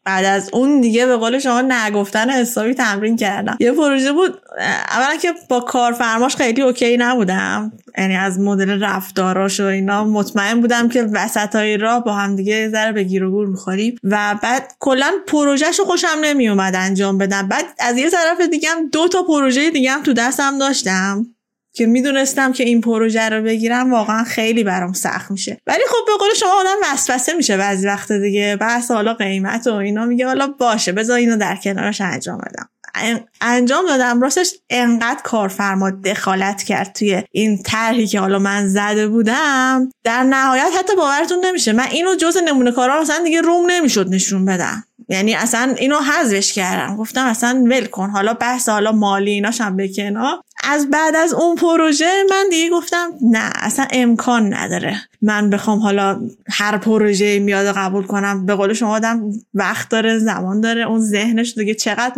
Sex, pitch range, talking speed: female, 205-270 Hz, 170 wpm